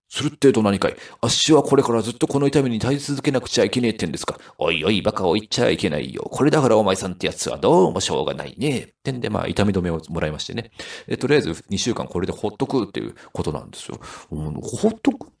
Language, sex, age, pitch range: Japanese, male, 40-59, 85-120 Hz